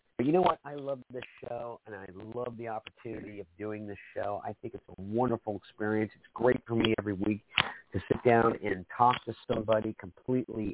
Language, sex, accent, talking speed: English, male, American, 205 wpm